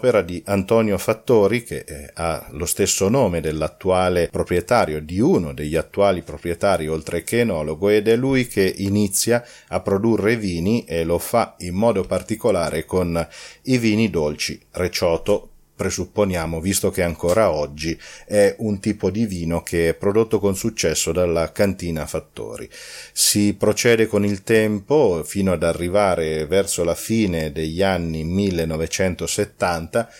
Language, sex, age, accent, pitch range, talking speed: Italian, male, 40-59, native, 85-110 Hz, 140 wpm